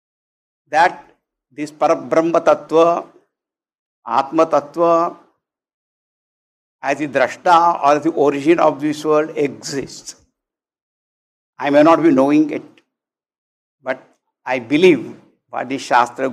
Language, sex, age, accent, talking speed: English, male, 60-79, Indian, 105 wpm